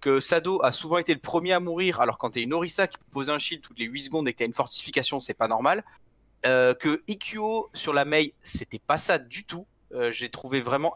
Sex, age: male, 30-49